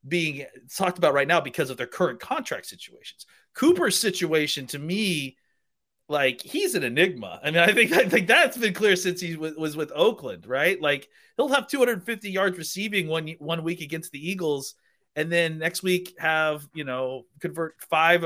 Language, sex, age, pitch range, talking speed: English, male, 30-49, 155-200 Hz, 185 wpm